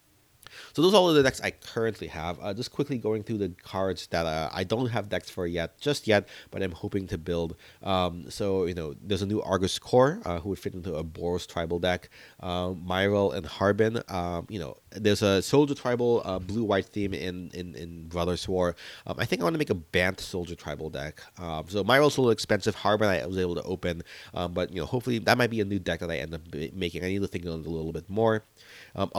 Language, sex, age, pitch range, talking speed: English, male, 30-49, 85-105 Hz, 245 wpm